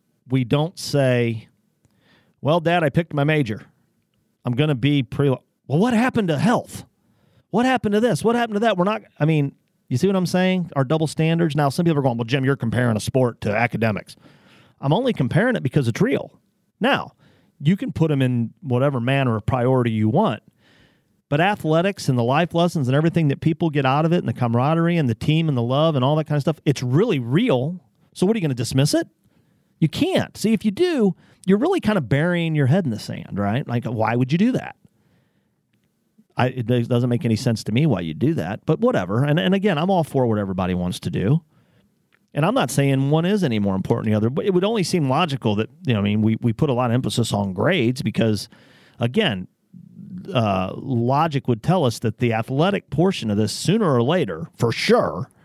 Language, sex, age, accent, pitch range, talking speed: English, male, 40-59, American, 120-175 Hz, 225 wpm